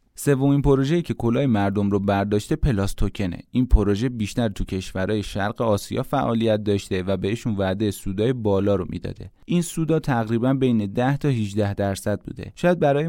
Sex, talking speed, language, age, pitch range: male, 160 wpm, Persian, 30-49, 100-130 Hz